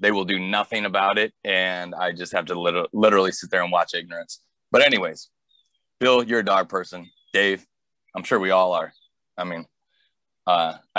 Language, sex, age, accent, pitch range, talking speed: English, male, 30-49, American, 90-110 Hz, 185 wpm